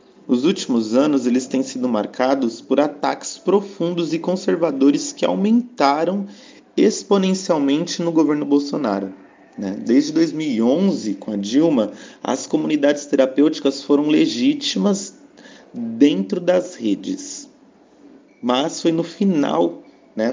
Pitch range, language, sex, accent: 130-215 Hz, Portuguese, male, Brazilian